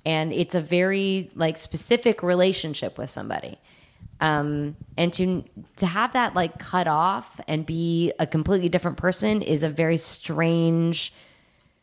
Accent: American